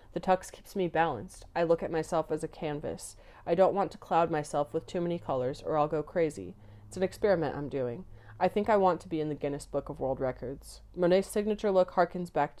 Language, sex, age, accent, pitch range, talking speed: English, female, 30-49, American, 150-180 Hz, 235 wpm